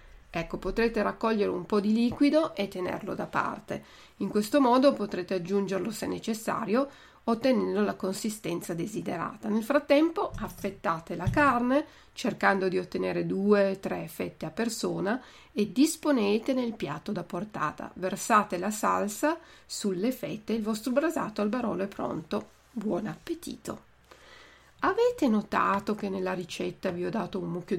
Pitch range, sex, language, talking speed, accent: 190-260 Hz, female, Italian, 145 wpm, native